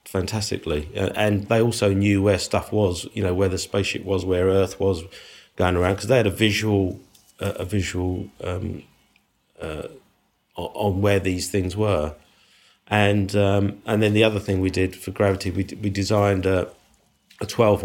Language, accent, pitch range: Polish, British, 90-105 Hz